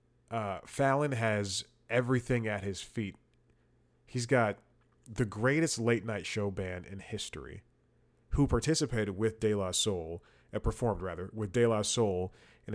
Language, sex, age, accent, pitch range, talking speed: English, male, 30-49, American, 95-120 Hz, 145 wpm